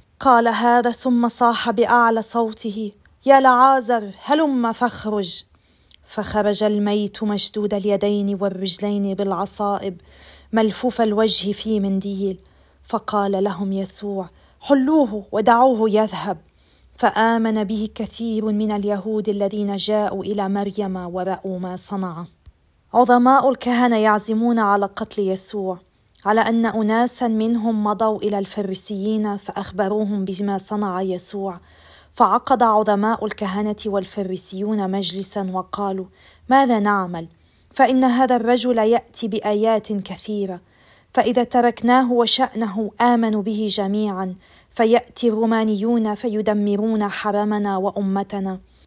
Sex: female